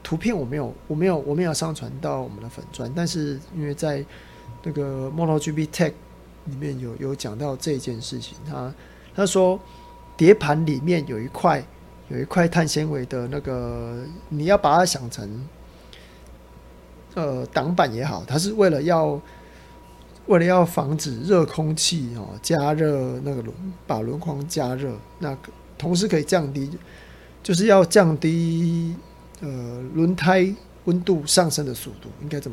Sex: male